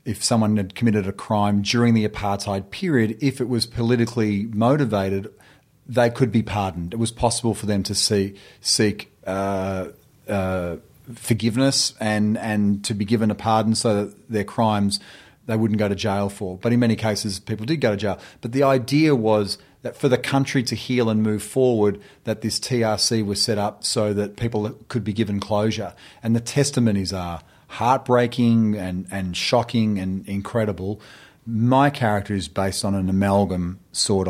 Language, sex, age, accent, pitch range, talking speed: English, male, 40-59, Australian, 100-115 Hz, 175 wpm